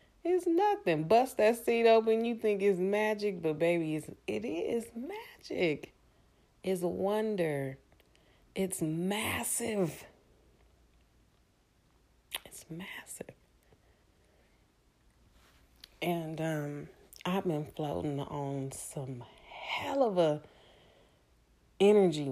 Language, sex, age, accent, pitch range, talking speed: English, female, 30-49, American, 140-210 Hz, 90 wpm